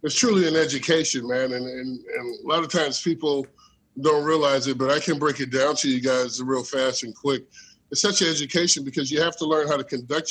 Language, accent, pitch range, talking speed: English, American, 130-160 Hz, 240 wpm